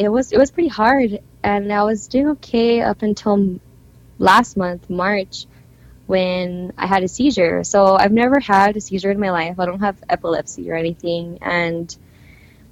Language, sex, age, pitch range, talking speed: English, female, 10-29, 175-210 Hz, 175 wpm